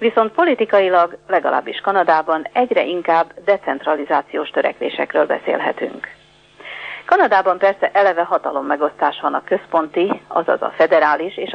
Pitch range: 165-200 Hz